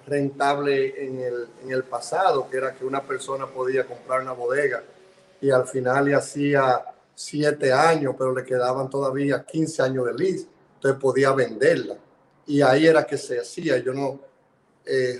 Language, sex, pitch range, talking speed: Spanish, male, 130-160 Hz, 165 wpm